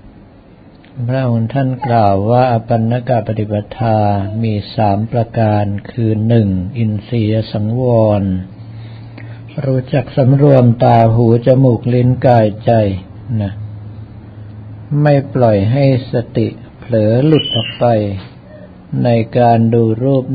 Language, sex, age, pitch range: Thai, male, 60-79, 105-125 Hz